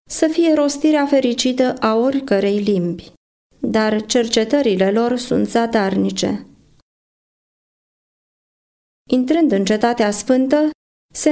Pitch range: 205-270 Hz